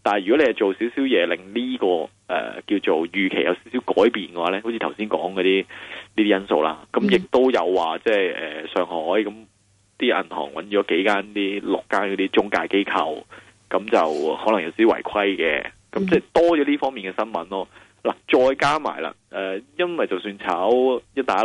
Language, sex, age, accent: Chinese, male, 20-39, native